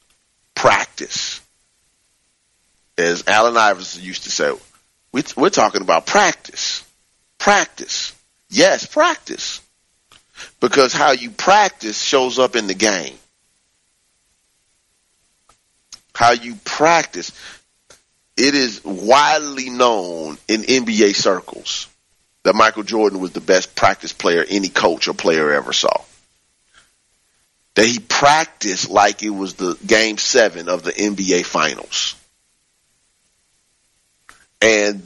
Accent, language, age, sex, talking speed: American, English, 40-59, male, 105 wpm